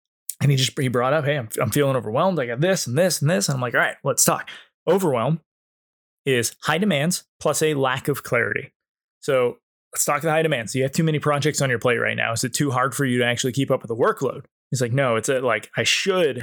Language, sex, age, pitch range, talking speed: English, male, 20-39, 125-160 Hz, 265 wpm